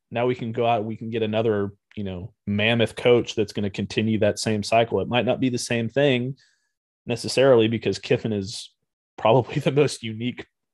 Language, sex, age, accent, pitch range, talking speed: English, male, 30-49, American, 105-125 Hz, 200 wpm